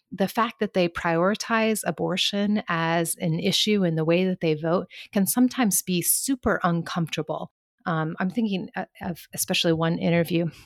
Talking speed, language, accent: 150 wpm, English, American